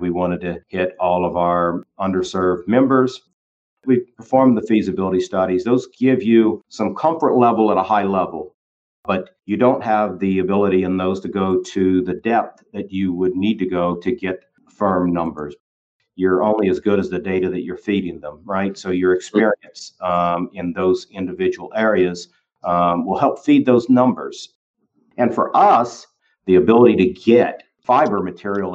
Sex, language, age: male, English, 50-69